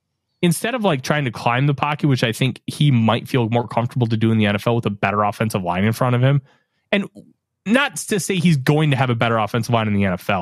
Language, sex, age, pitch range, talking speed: English, male, 20-39, 120-160 Hz, 260 wpm